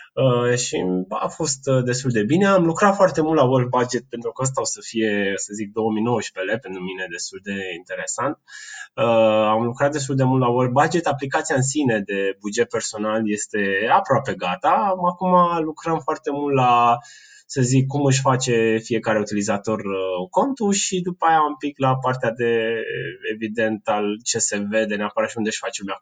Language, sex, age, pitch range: Romanian, male, 20-39, 105-145 Hz